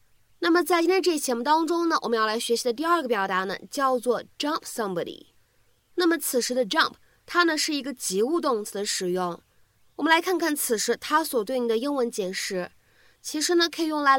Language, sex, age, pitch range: Chinese, female, 20-39, 215-310 Hz